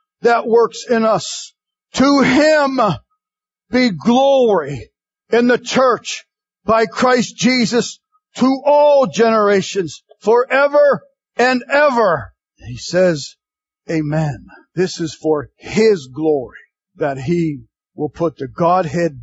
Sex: male